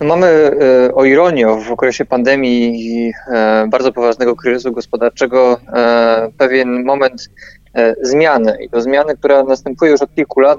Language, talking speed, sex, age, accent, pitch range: Polish, 130 wpm, male, 20-39, native, 120-135 Hz